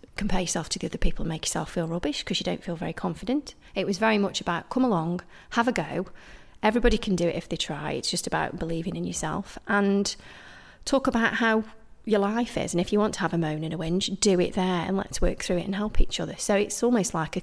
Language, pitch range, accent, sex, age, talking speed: English, 180-220 Hz, British, female, 30-49, 255 wpm